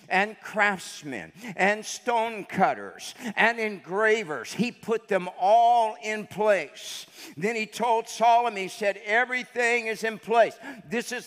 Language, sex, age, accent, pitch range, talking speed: English, male, 50-69, American, 165-255 Hz, 135 wpm